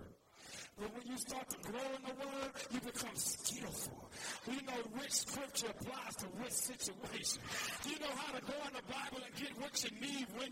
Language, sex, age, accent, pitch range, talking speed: English, male, 40-59, American, 260-355 Hz, 185 wpm